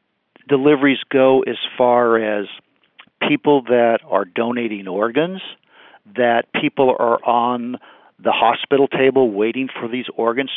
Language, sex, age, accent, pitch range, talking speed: English, male, 50-69, American, 115-140 Hz, 120 wpm